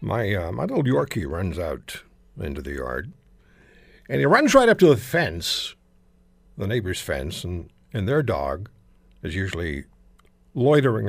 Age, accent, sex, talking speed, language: 60-79, American, male, 150 wpm, English